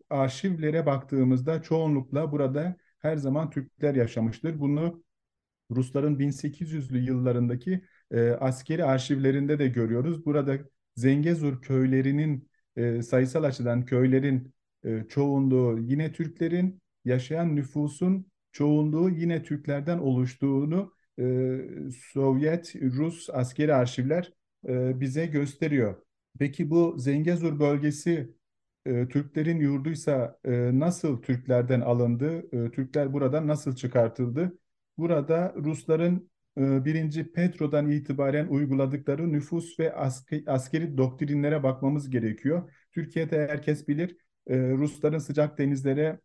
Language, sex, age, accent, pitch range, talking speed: Turkish, male, 50-69, native, 130-155 Hz, 95 wpm